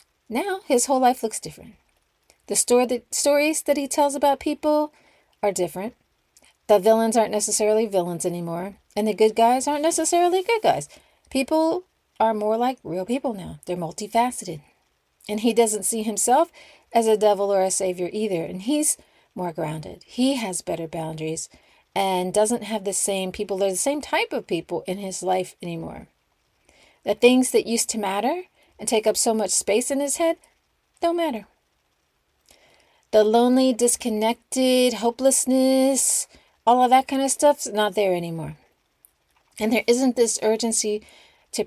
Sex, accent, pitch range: female, American, 190-260 Hz